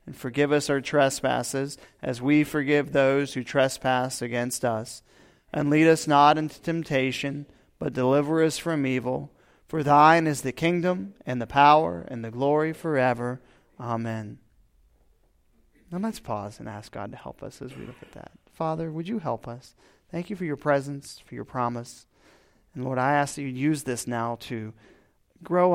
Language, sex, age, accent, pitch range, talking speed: English, male, 30-49, American, 125-155 Hz, 170 wpm